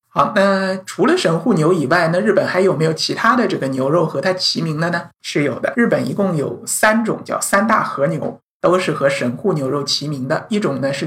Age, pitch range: 50-69, 160-210 Hz